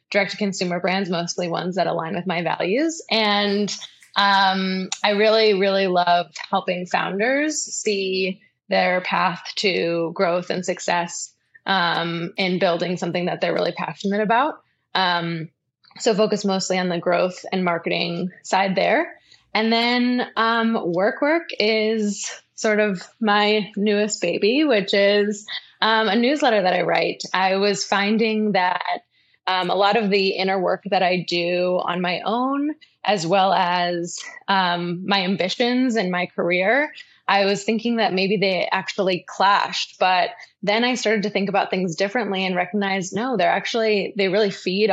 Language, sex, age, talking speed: English, female, 20-39, 150 wpm